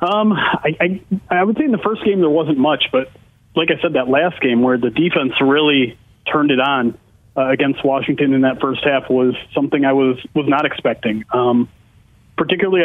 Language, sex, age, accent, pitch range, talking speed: English, male, 30-49, American, 130-165 Hz, 200 wpm